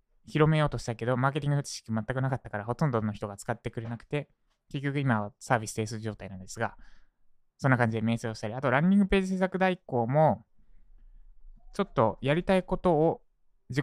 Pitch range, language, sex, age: 115-155 Hz, Japanese, male, 20-39